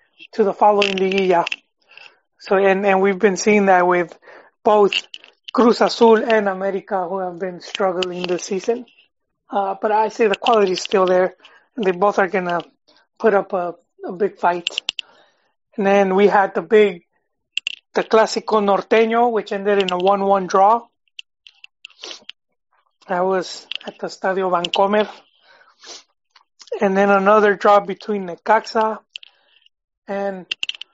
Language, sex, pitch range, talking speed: English, male, 190-220 Hz, 140 wpm